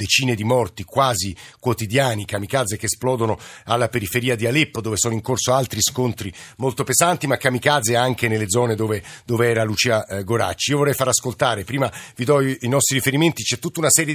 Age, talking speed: 50-69, 185 wpm